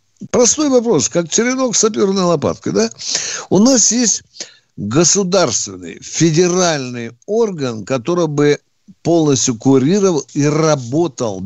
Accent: native